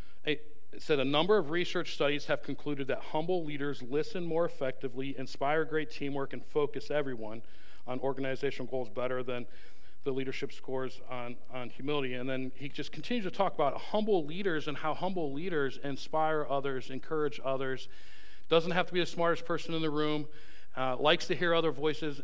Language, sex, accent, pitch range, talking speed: English, male, American, 125-155 Hz, 180 wpm